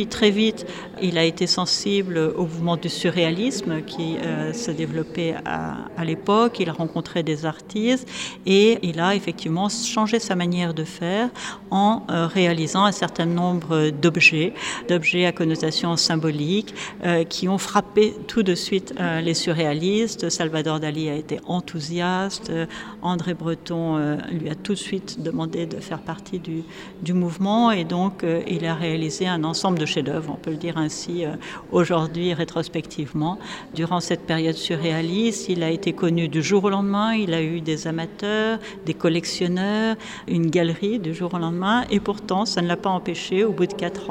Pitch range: 165-195 Hz